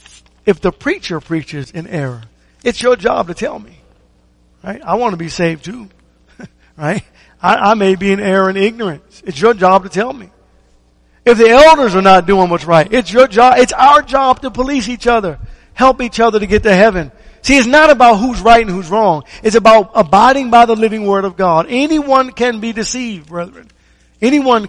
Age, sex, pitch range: 50-69, male, 150-220 Hz